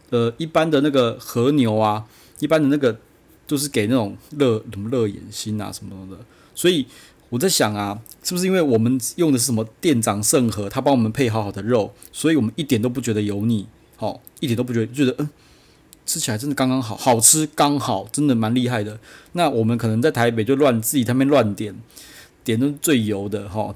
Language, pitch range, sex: Chinese, 105-130 Hz, male